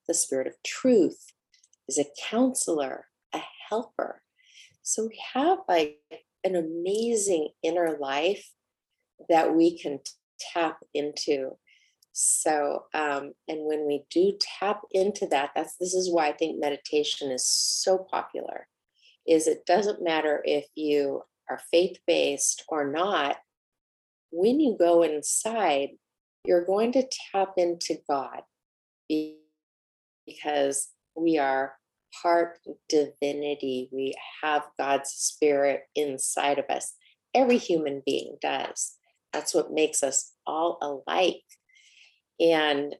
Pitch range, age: 145-180 Hz, 40-59